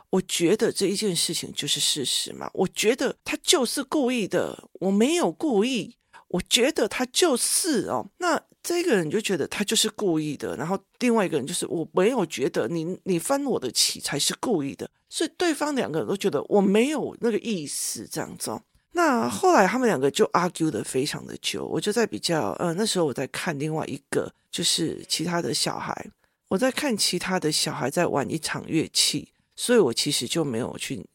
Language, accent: Chinese, native